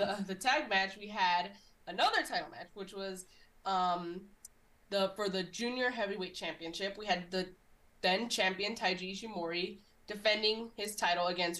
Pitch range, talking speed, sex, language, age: 185-215 Hz, 150 wpm, female, English, 20-39